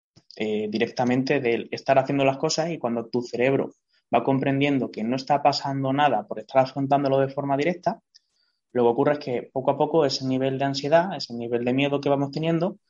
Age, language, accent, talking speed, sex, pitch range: 20-39, Spanish, Spanish, 200 wpm, male, 130-155 Hz